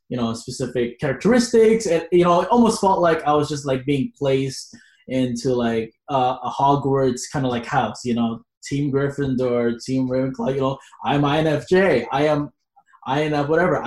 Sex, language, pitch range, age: male, English, 125-150 Hz, 20-39